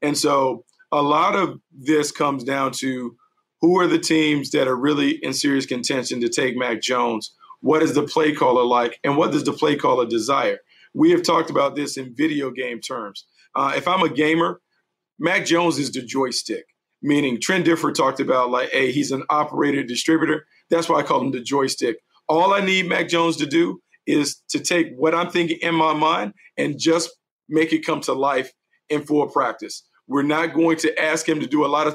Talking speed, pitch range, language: 205 wpm, 140-170 Hz, English